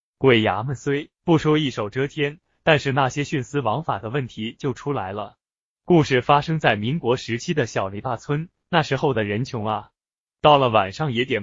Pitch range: 115-150 Hz